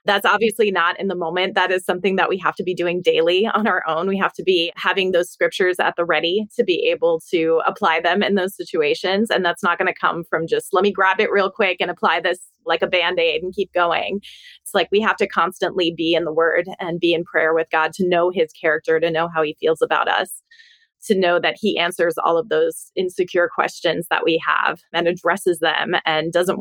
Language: English